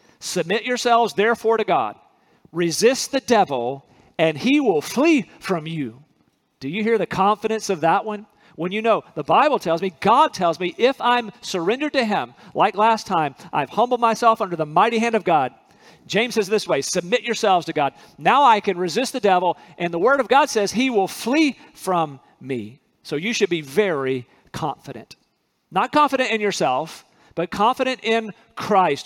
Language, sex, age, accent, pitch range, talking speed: English, male, 40-59, American, 170-225 Hz, 180 wpm